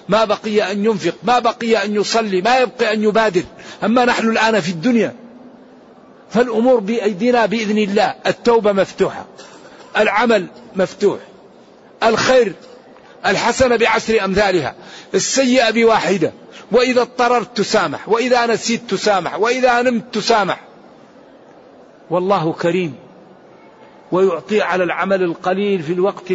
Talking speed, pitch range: 110 wpm, 155-215 Hz